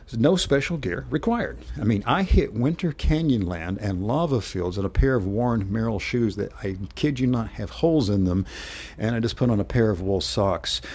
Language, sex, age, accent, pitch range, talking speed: English, male, 60-79, American, 95-115 Hz, 220 wpm